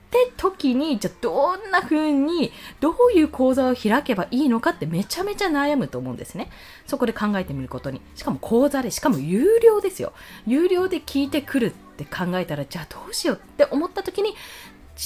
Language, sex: Japanese, female